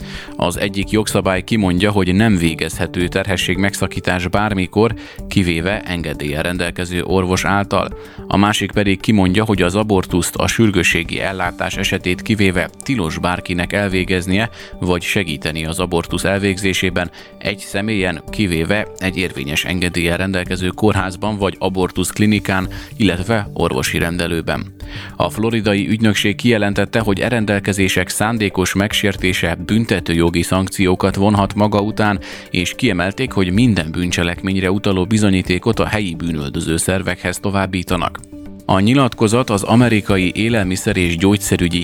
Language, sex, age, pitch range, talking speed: Hungarian, male, 30-49, 90-100 Hz, 120 wpm